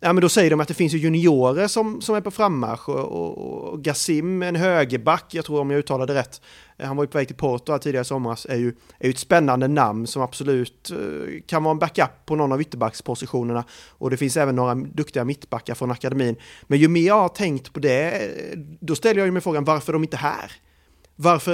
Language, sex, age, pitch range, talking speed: Swedish, male, 30-49, 130-170 Hz, 235 wpm